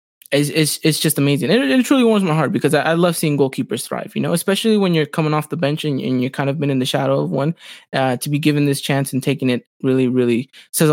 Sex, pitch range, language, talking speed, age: male, 145-175 Hz, English, 275 wpm, 20-39